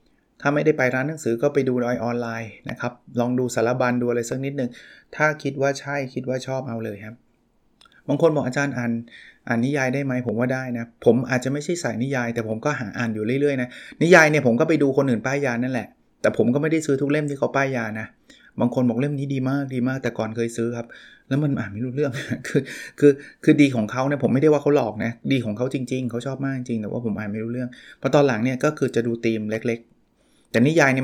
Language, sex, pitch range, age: Thai, male, 115-145 Hz, 20-39